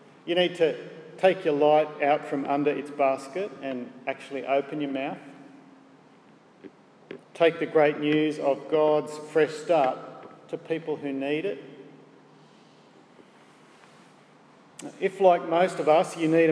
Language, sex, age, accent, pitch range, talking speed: English, male, 50-69, Australian, 145-180 Hz, 130 wpm